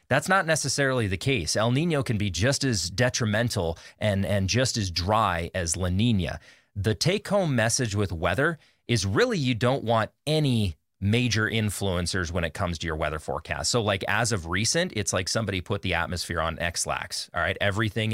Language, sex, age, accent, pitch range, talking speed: English, male, 30-49, American, 95-125 Hz, 190 wpm